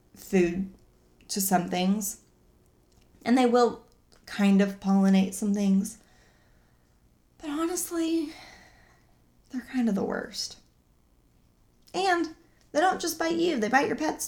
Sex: female